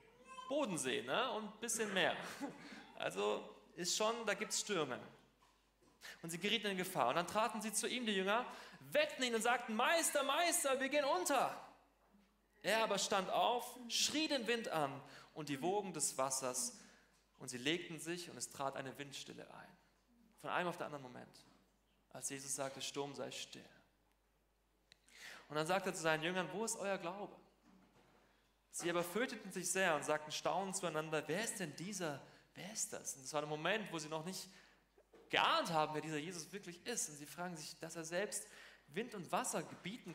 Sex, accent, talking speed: male, German, 185 wpm